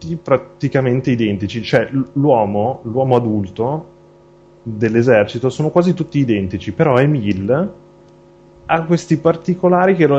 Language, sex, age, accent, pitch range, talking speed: Italian, male, 30-49, native, 100-140 Hz, 105 wpm